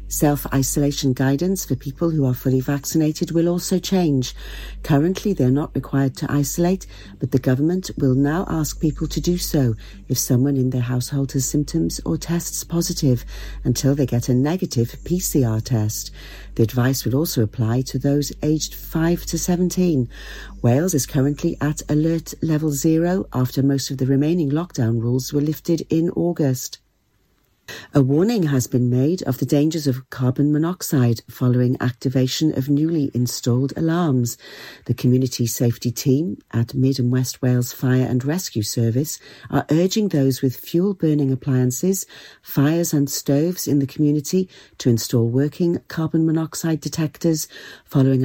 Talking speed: 150 wpm